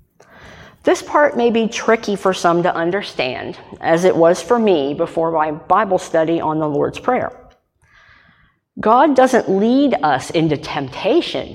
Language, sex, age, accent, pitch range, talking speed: English, female, 50-69, American, 165-215 Hz, 145 wpm